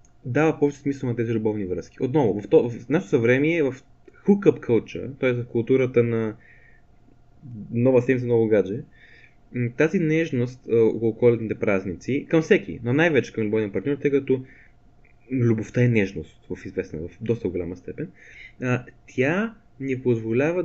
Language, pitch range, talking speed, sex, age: Bulgarian, 120-150 Hz, 150 wpm, male, 20-39